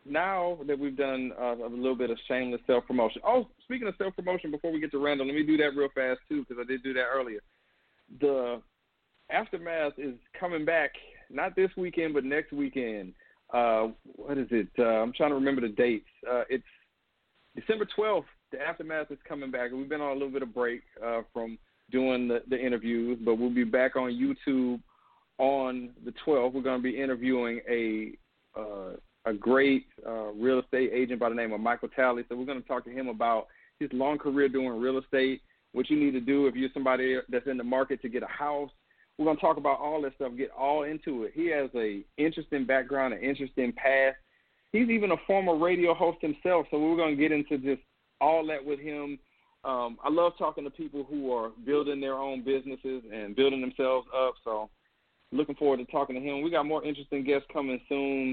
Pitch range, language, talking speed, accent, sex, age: 125-150 Hz, English, 210 wpm, American, male, 40-59